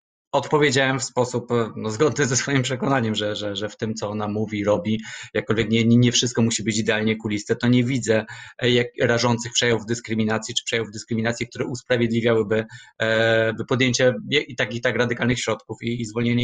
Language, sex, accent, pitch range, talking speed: Polish, male, native, 110-125 Hz, 175 wpm